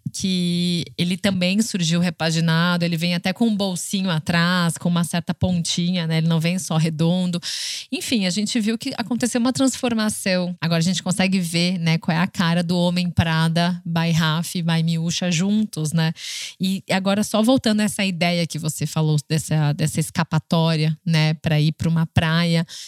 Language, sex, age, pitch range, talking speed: Portuguese, female, 20-39, 165-215 Hz, 180 wpm